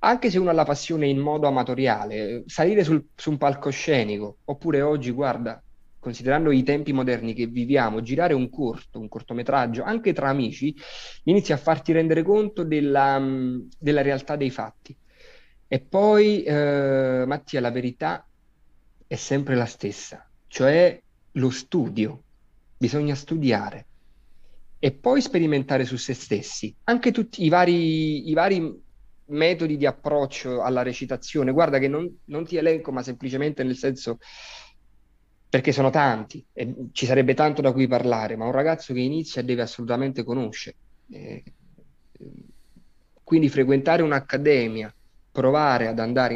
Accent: native